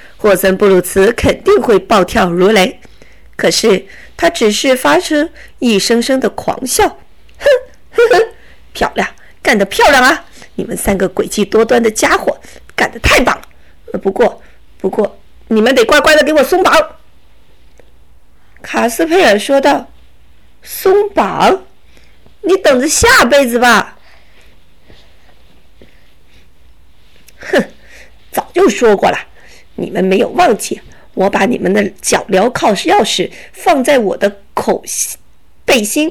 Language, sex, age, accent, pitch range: Chinese, female, 50-69, native, 205-325 Hz